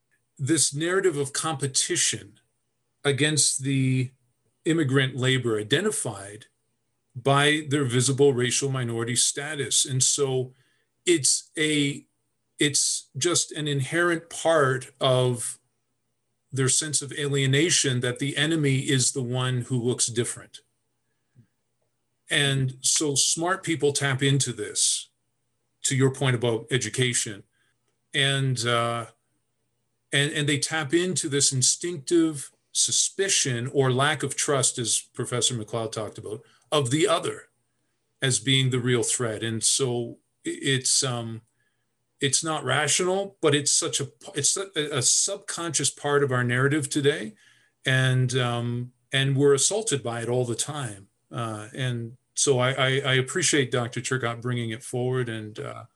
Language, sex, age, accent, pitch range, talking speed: English, male, 40-59, American, 120-145 Hz, 130 wpm